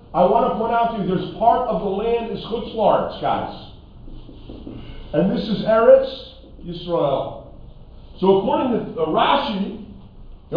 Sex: male